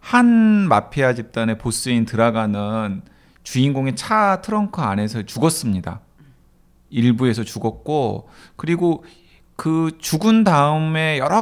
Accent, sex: native, male